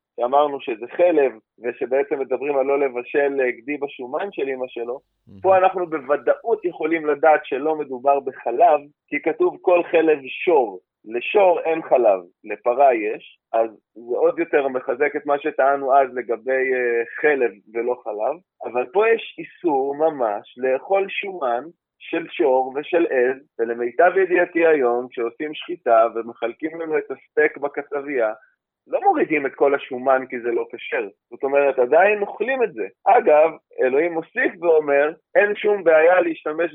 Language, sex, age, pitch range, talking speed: Hebrew, male, 30-49, 125-180 Hz, 145 wpm